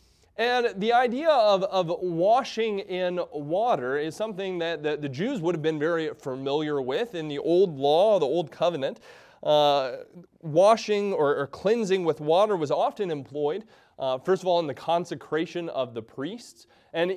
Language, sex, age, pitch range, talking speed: English, male, 30-49, 150-210 Hz, 170 wpm